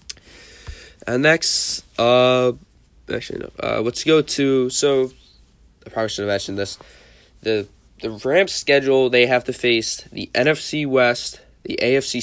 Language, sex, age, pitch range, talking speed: English, male, 20-39, 95-125 Hz, 140 wpm